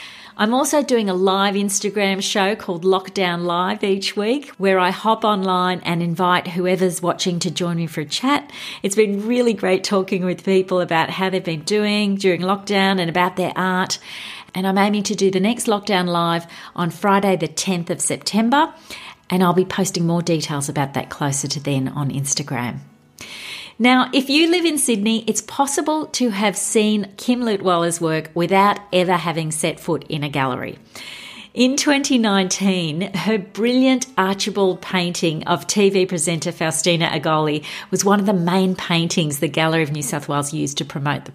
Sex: female